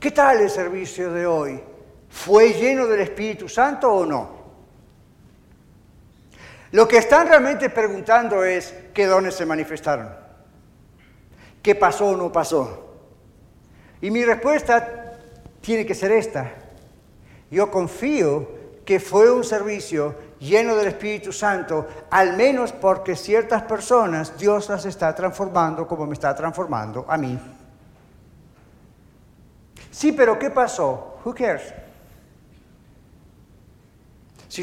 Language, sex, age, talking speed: Spanish, male, 60-79, 115 wpm